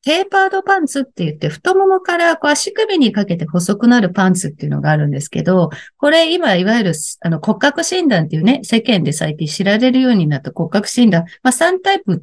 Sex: female